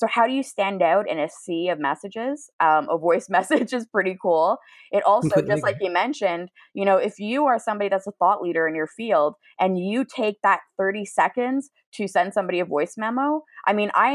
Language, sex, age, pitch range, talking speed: English, female, 20-39, 175-235 Hz, 210 wpm